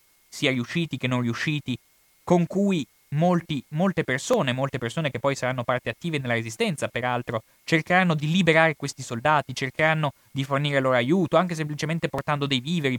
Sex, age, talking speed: male, 20-39, 160 wpm